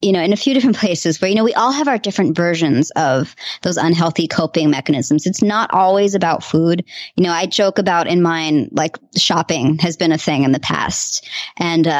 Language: English